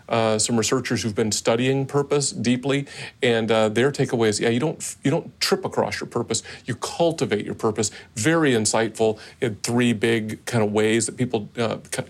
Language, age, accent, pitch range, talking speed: English, 40-59, American, 110-130 Hz, 185 wpm